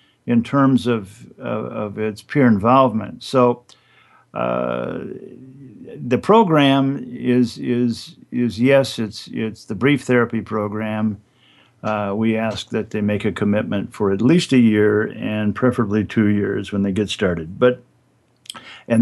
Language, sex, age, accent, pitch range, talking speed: English, male, 50-69, American, 105-125 Hz, 140 wpm